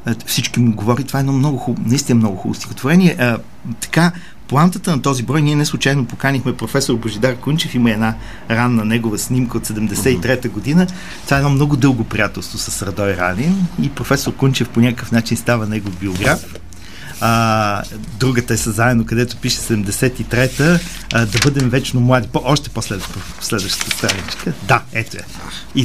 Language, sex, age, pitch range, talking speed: Bulgarian, male, 50-69, 110-140 Hz, 160 wpm